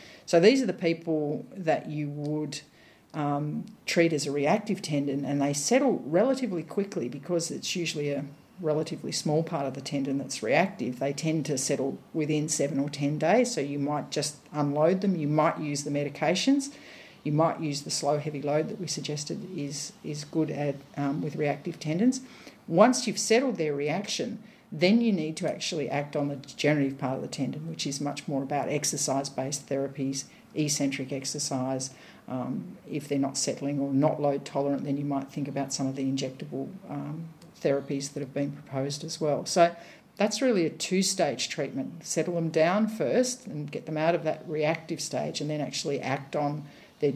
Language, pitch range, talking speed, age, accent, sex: English, 140-170 Hz, 185 wpm, 50-69, Australian, female